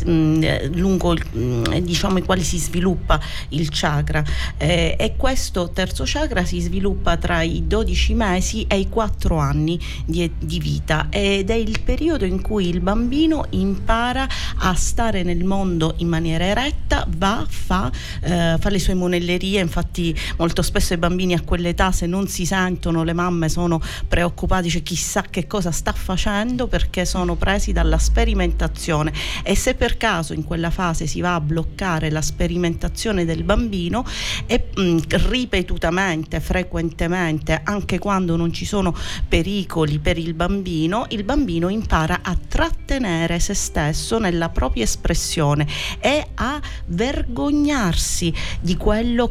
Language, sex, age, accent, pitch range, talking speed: Italian, female, 40-59, native, 165-200 Hz, 145 wpm